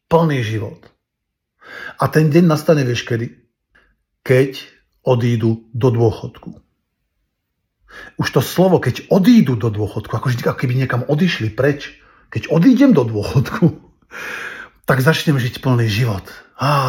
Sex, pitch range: male, 115-140 Hz